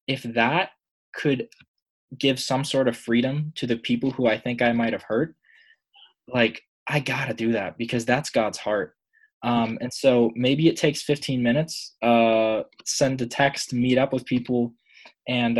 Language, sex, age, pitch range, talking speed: English, male, 20-39, 120-155 Hz, 175 wpm